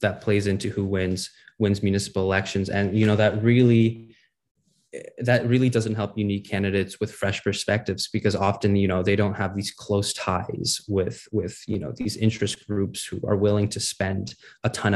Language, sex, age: English, male, 20-39